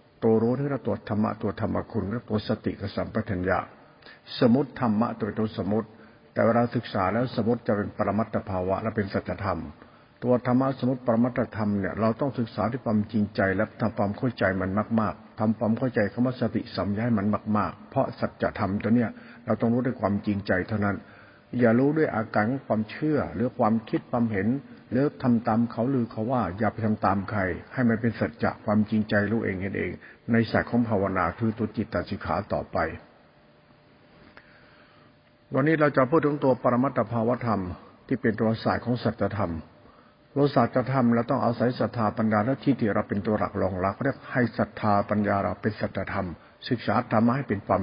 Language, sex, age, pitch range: Thai, male, 60-79, 105-120 Hz